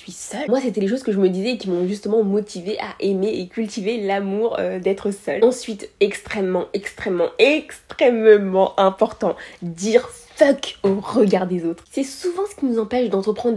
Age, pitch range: 20-39, 195-240 Hz